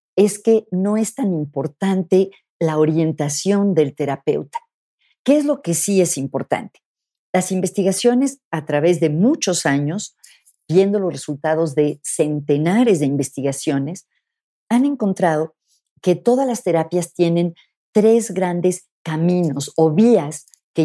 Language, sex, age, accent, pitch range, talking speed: Spanish, female, 50-69, Mexican, 150-195 Hz, 125 wpm